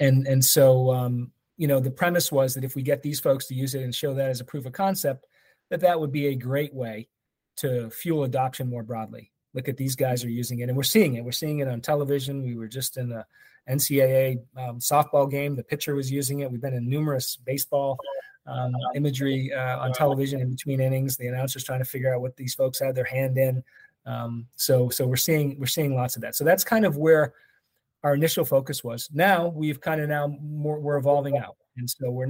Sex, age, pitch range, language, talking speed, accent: male, 30-49, 125-145 Hz, English, 230 wpm, American